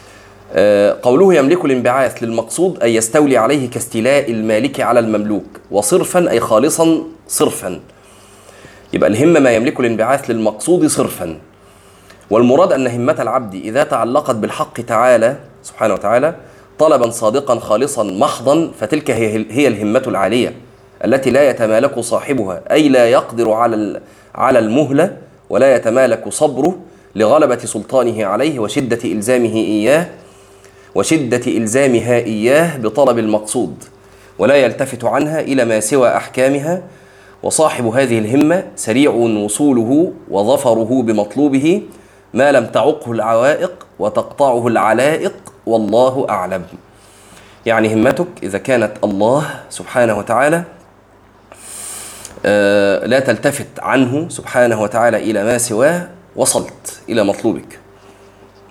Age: 30-49